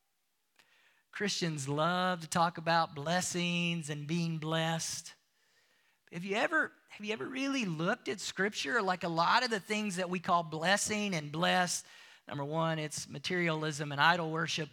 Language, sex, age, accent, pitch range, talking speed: English, male, 40-59, American, 170-270 Hz, 155 wpm